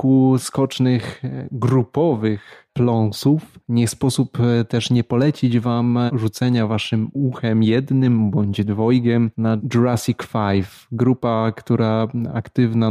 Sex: male